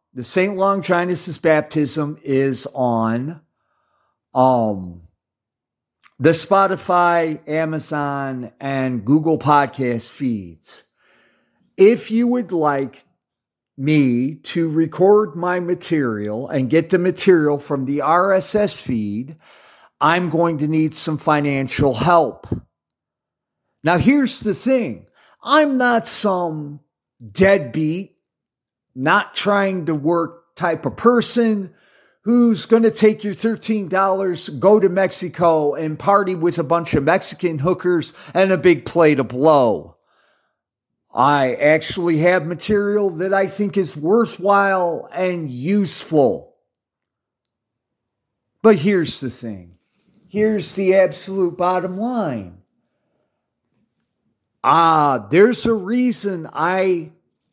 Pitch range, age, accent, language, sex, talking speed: 140-195 Hz, 50-69, American, English, male, 100 wpm